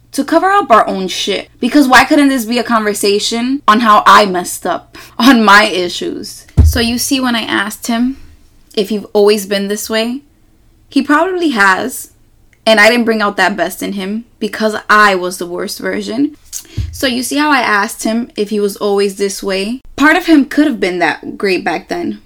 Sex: female